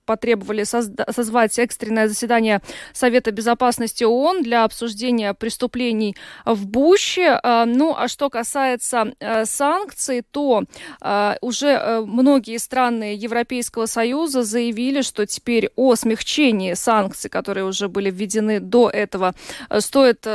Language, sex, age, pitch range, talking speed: Russian, female, 20-39, 220-265 Hz, 105 wpm